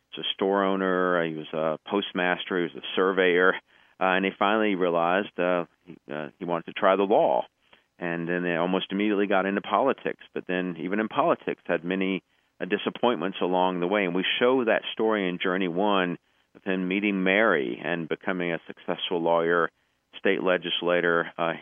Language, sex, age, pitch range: English, male, 40-59, 85-95 Hz